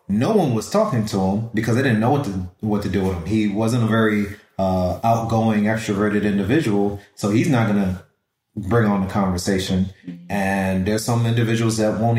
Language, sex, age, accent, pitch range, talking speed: English, male, 30-49, American, 100-120 Hz, 195 wpm